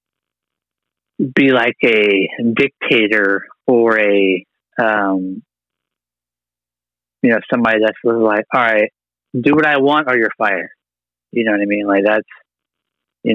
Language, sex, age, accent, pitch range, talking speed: English, male, 30-49, American, 95-130 Hz, 135 wpm